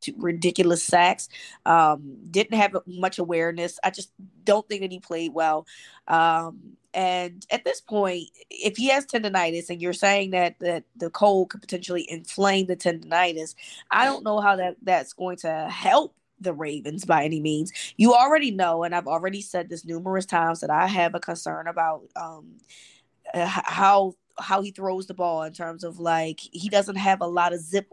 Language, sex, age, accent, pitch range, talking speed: English, female, 20-39, American, 175-210 Hz, 180 wpm